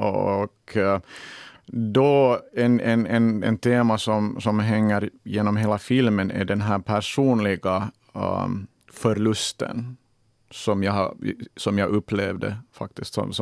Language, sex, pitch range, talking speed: Swedish, male, 100-115 Hz, 115 wpm